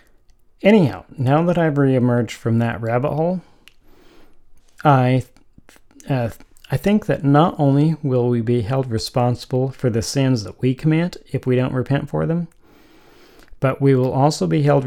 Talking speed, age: 155 wpm, 40-59